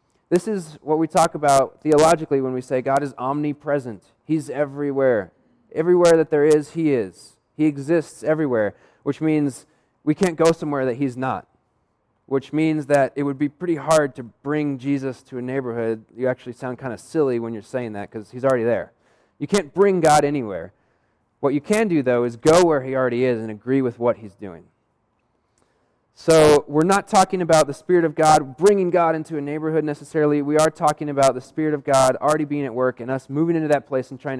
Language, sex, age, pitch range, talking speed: English, male, 20-39, 130-155 Hz, 205 wpm